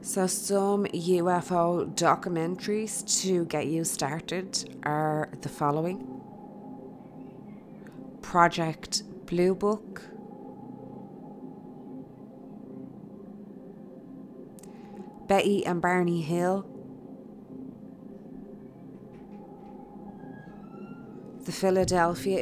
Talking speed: 55 wpm